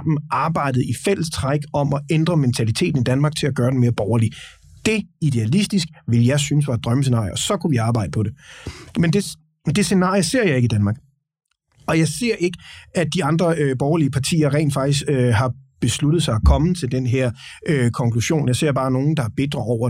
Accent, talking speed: native, 205 wpm